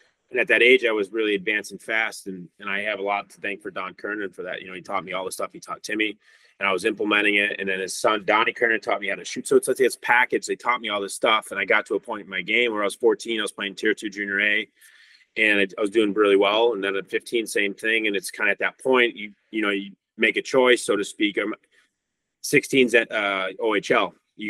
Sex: male